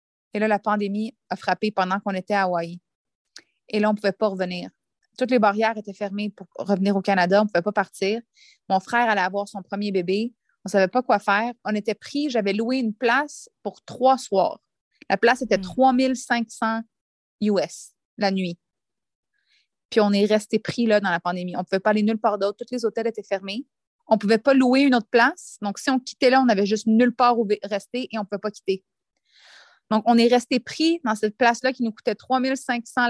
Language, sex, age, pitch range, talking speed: French, female, 30-49, 200-240 Hz, 220 wpm